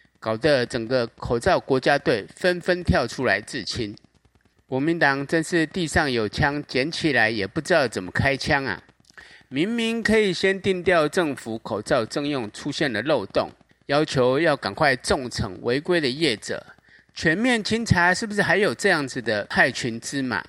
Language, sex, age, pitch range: Chinese, male, 30-49, 120-170 Hz